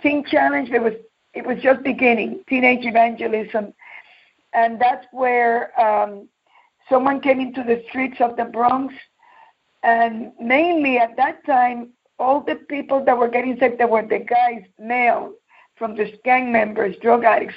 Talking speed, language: 155 wpm, English